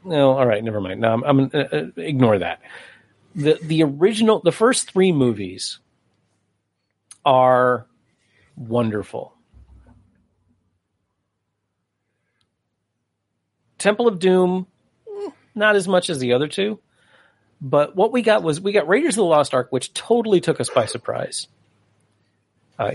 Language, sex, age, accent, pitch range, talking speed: English, male, 40-59, American, 110-160 Hz, 130 wpm